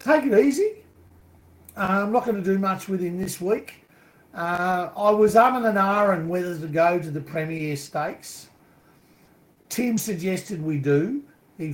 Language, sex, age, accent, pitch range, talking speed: English, male, 50-69, Australian, 140-175 Hz, 170 wpm